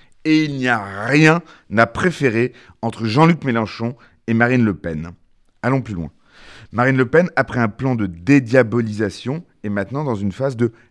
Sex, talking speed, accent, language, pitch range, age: male, 170 wpm, French, French, 105-140 Hz, 40-59